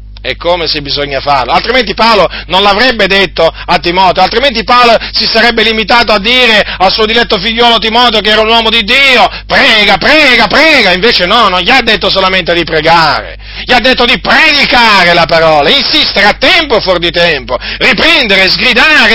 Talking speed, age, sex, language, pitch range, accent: 180 wpm, 40-59, male, Italian, 145-215 Hz, native